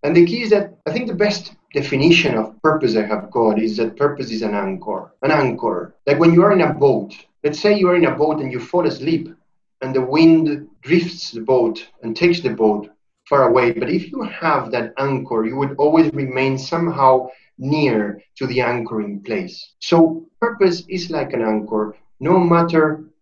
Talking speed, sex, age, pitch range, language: 200 wpm, male, 30-49, 120-160 Hz, English